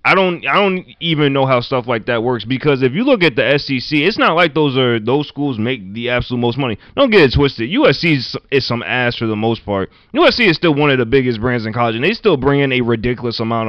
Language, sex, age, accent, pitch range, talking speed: English, male, 20-39, American, 110-145 Hz, 265 wpm